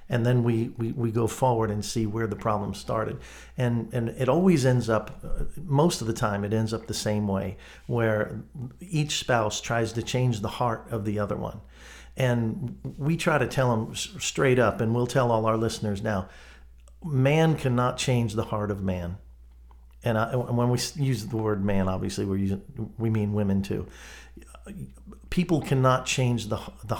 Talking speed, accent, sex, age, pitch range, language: 185 wpm, American, male, 50-69, 100-130 Hz, English